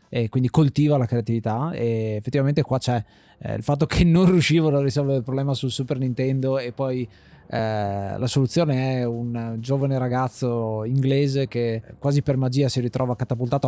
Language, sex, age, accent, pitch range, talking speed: Italian, male, 20-39, native, 115-140 Hz, 165 wpm